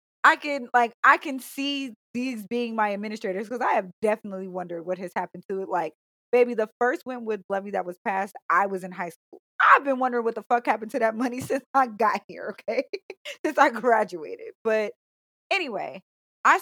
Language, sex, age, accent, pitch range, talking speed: English, female, 20-39, American, 195-245 Hz, 200 wpm